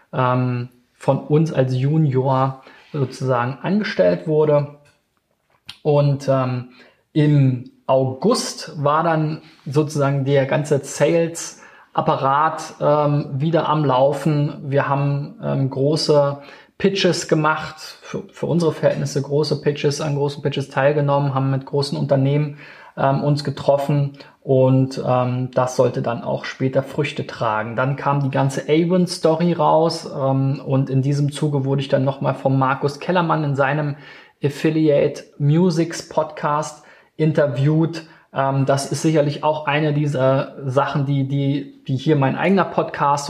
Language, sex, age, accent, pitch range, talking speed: German, male, 20-39, German, 135-155 Hz, 125 wpm